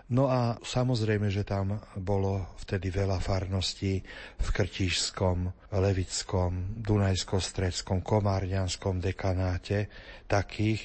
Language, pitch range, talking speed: Slovak, 95-110 Hz, 90 wpm